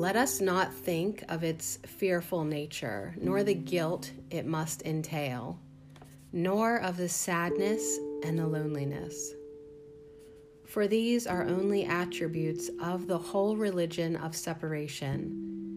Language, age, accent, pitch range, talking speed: English, 30-49, American, 145-185 Hz, 120 wpm